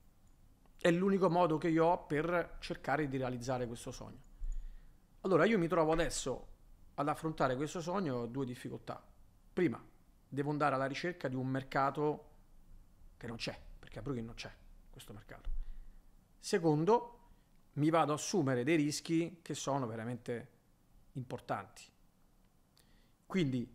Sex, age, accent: male, 40-59, native